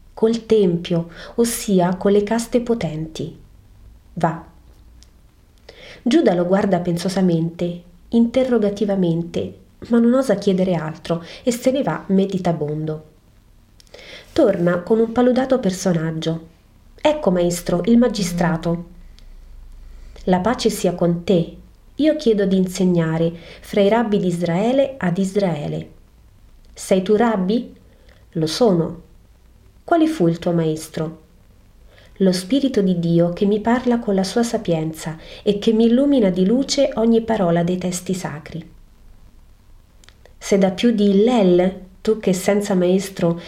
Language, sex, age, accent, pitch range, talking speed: Italian, female, 30-49, native, 170-220 Hz, 125 wpm